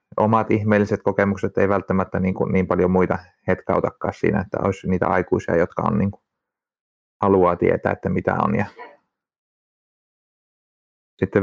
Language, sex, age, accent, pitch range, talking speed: Finnish, male, 30-49, native, 95-110 Hz, 140 wpm